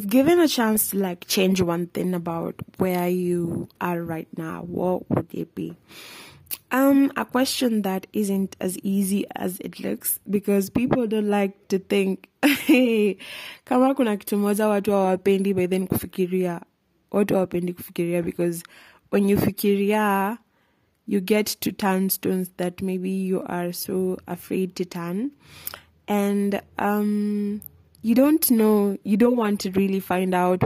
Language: English